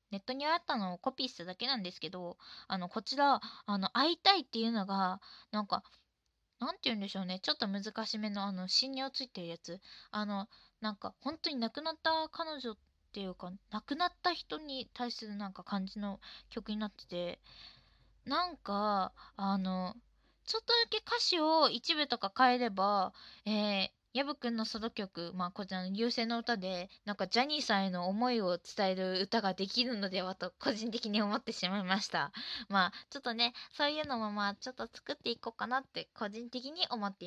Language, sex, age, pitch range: Japanese, female, 20-39, 190-255 Hz